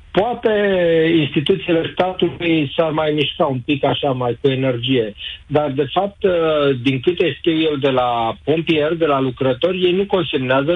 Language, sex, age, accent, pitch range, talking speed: Romanian, male, 50-69, native, 135-165 Hz, 155 wpm